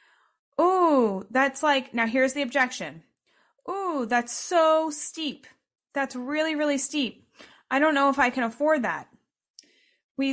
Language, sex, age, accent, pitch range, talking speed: English, female, 30-49, American, 230-285 Hz, 140 wpm